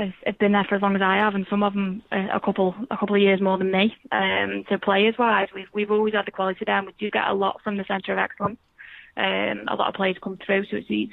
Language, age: English, 10-29